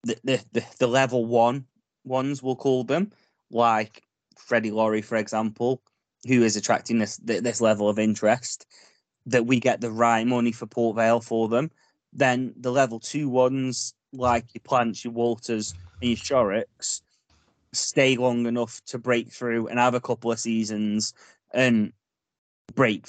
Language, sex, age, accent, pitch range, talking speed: English, male, 20-39, British, 110-125 Hz, 155 wpm